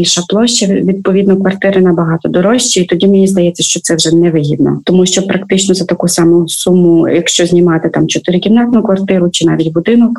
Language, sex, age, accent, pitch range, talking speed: Ukrainian, female, 30-49, native, 175-200 Hz, 165 wpm